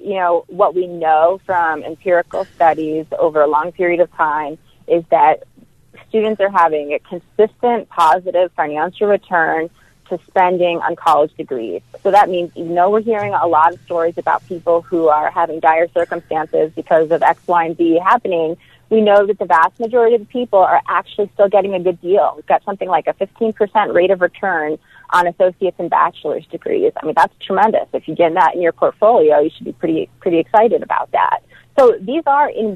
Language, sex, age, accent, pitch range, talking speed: English, female, 30-49, American, 165-210 Hz, 195 wpm